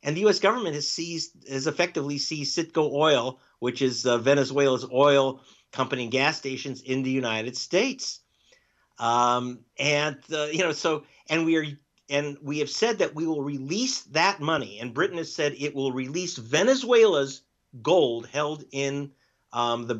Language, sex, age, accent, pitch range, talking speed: English, male, 50-69, American, 125-160 Hz, 170 wpm